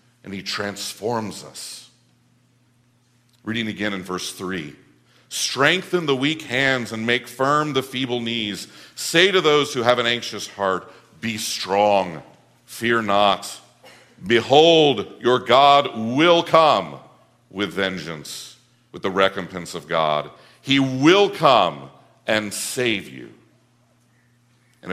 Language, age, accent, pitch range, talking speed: English, 50-69, American, 100-125 Hz, 120 wpm